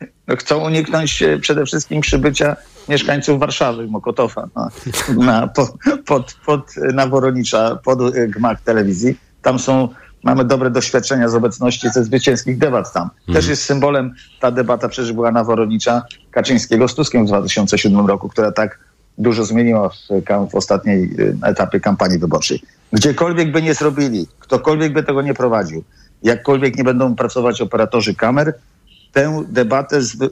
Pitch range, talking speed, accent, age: 115-140 Hz, 140 wpm, native, 50-69